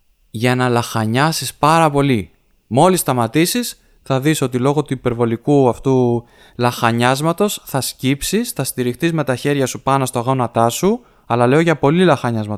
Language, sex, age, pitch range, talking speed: Greek, male, 20-39, 120-155 Hz, 155 wpm